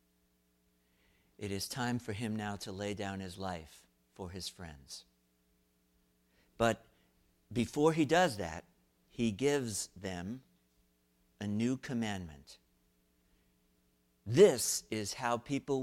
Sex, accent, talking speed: male, American, 110 wpm